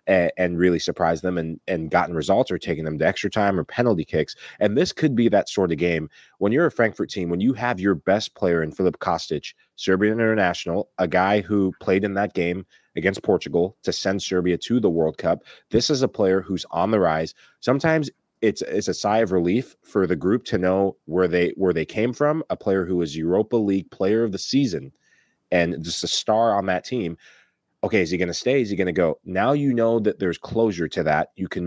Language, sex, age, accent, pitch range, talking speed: English, male, 30-49, American, 90-105 Hz, 225 wpm